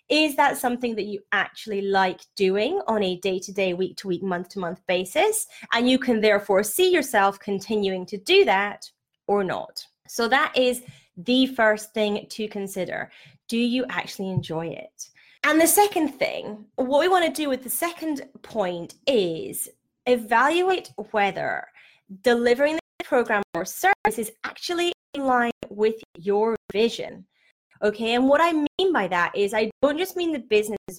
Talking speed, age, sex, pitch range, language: 155 wpm, 30-49, female, 200-270 Hz, English